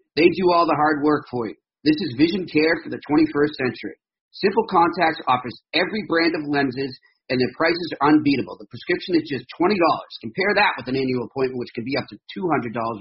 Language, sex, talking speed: English, male, 210 wpm